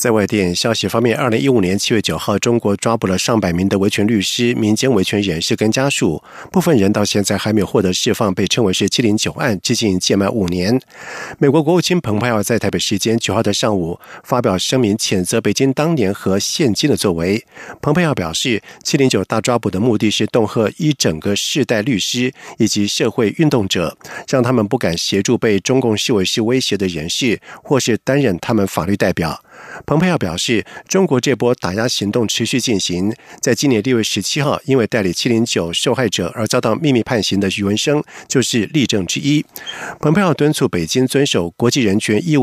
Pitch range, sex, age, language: 100-130 Hz, male, 50-69, German